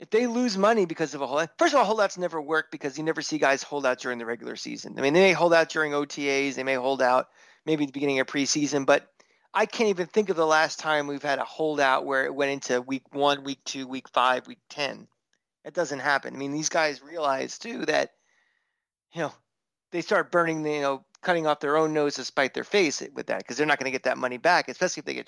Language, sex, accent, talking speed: English, male, American, 260 wpm